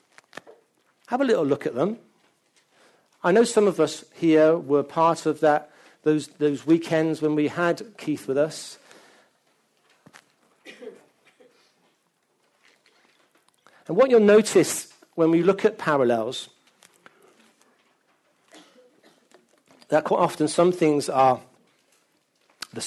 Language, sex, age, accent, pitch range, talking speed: English, male, 50-69, British, 145-200 Hz, 110 wpm